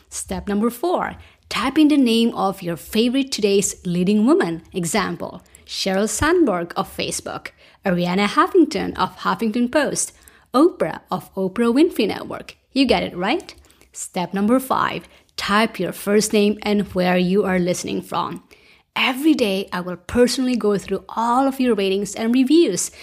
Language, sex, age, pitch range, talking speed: English, female, 30-49, 190-255 Hz, 150 wpm